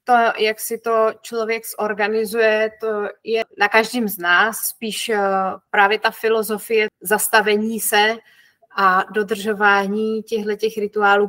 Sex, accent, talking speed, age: female, native, 115 wpm, 30-49